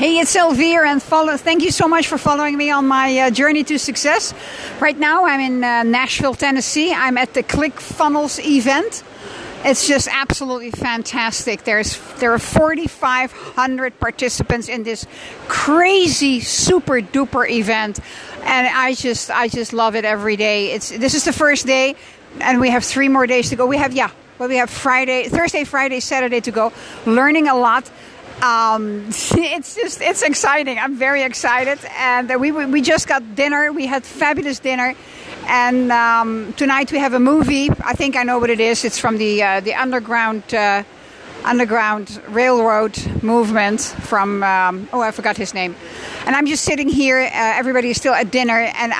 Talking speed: 180 wpm